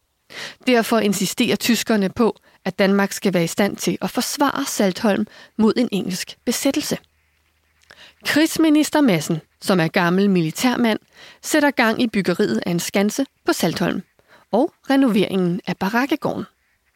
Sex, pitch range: female, 195-250 Hz